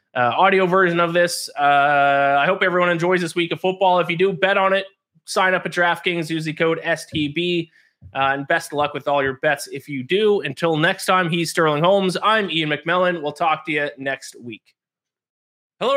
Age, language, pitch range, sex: 20-39, English, 145-185 Hz, male